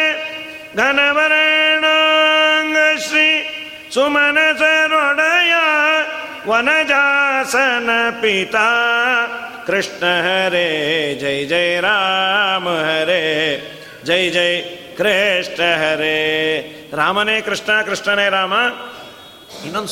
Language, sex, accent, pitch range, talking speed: Kannada, male, native, 175-250 Hz, 65 wpm